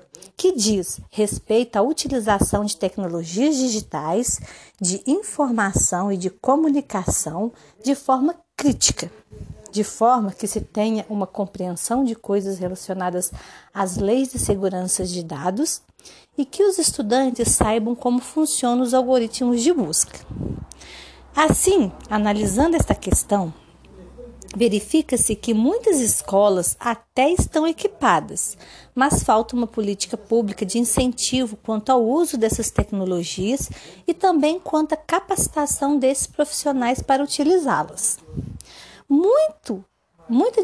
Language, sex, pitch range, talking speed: Portuguese, female, 205-285 Hz, 110 wpm